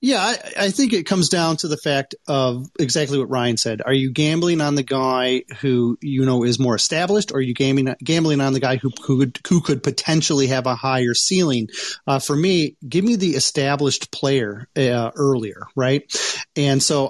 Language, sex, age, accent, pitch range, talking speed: English, male, 30-49, American, 130-150 Hz, 195 wpm